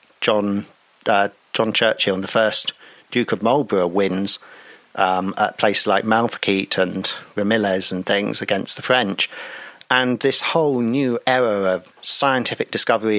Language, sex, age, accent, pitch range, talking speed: English, male, 50-69, British, 105-130 Hz, 135 wpm